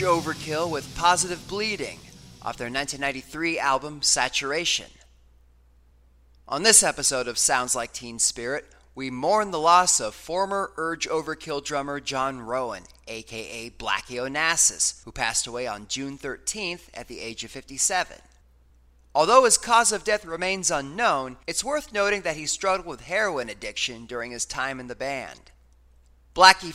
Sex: male